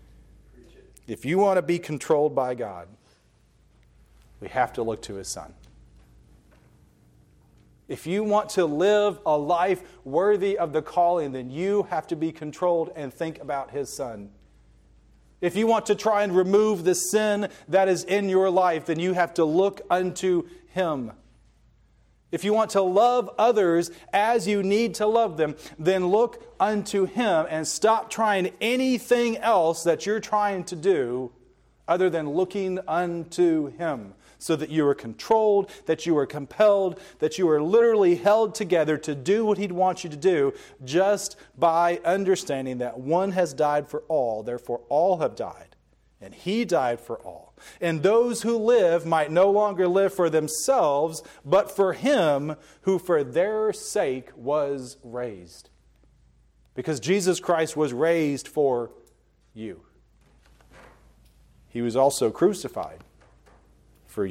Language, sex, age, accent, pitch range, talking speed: English, male, 40-59, American, 145-200 Hz, 150 wpm